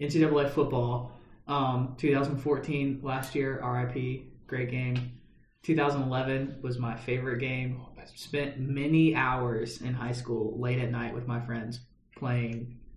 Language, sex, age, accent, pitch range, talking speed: English, male, 20-39, American, 125-145 Hz, 130 wpm